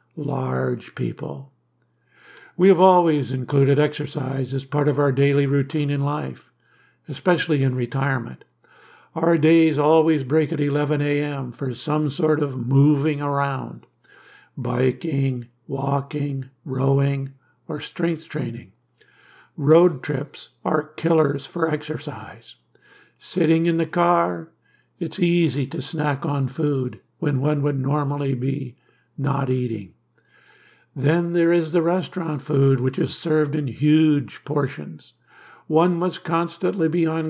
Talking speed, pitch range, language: 125 wpm, 130-160 Hz, English